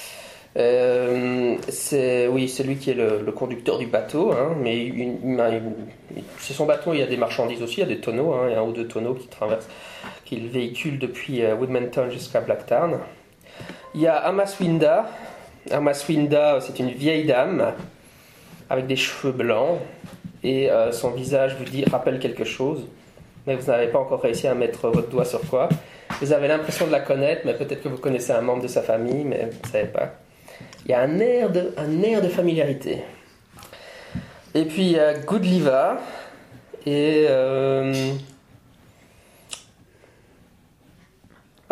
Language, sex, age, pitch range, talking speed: English, male, 20-39, 125-155 Hz, 170 wpm